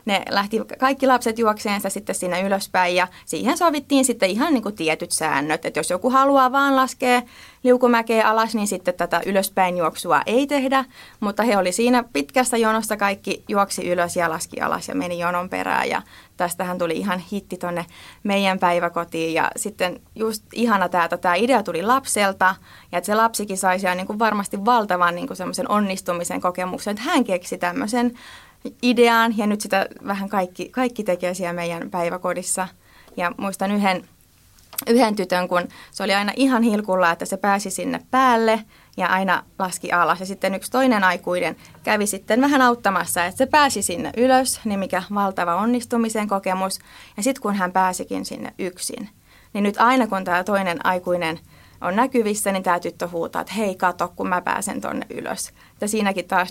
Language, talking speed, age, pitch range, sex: Finnish, 170 wpm, 30-49, 180-230 Hz, female